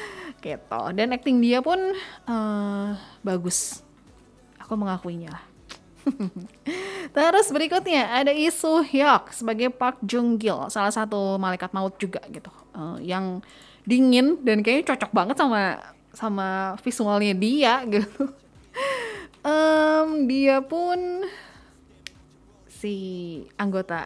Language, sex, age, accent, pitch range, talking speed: Indonesian, female, 20-39, native, 195-275 Hz, 100 wpm